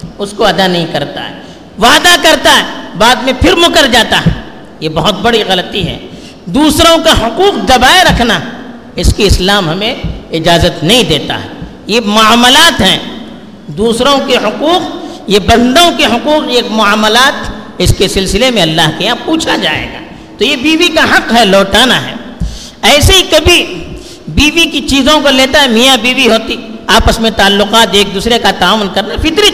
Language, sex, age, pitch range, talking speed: Urdu, female, 50-69, 205-310 Hz, 180 wpm